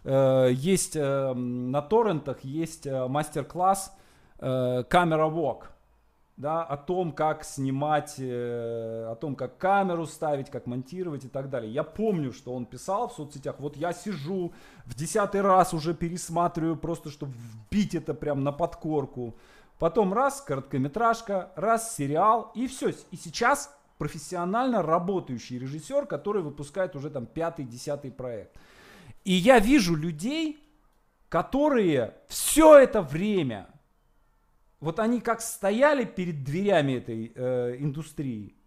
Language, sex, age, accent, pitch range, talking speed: Russian, male, 20-39, native, 135-195 Hz, 130 wpm